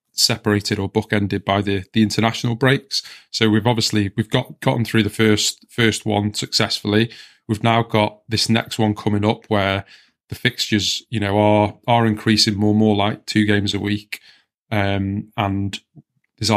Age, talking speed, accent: 20-39, 170 wpm, British